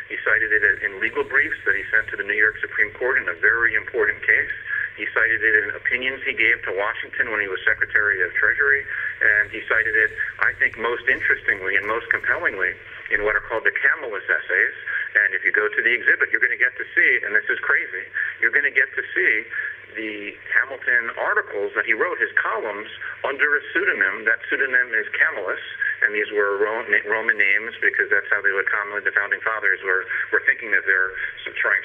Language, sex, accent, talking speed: English, male, American, 210 wpm